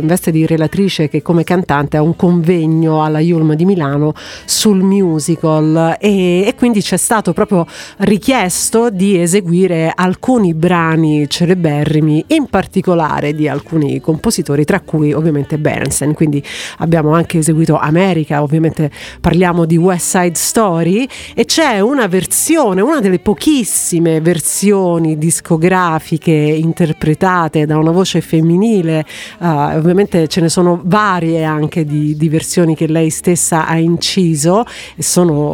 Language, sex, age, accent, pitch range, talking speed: Italian, female, 40-59, native, 160-195 Hz, 135 wpm